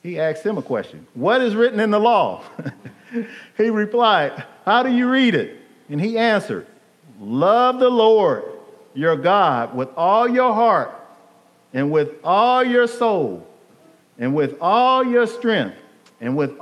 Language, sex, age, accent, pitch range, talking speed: English, male, 50-69, American, 180-245 Hz, 150 wpm